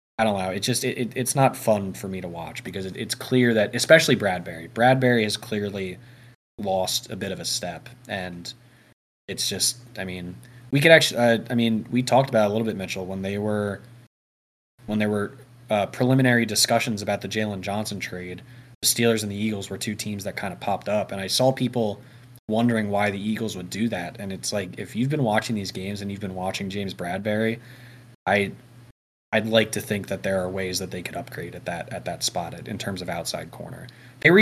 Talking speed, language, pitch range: 230 wpm, English, 100-125 Hz